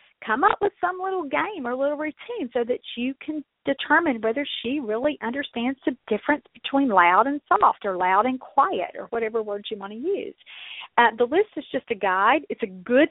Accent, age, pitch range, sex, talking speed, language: American, 40-59, 225-295 Hz, female, 205 wpm, English